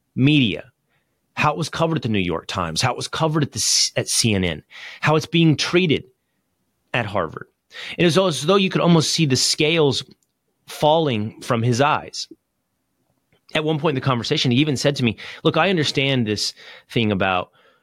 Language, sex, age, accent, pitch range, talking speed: English, male, 30-49, American, 115-170 Hz, 185 wpm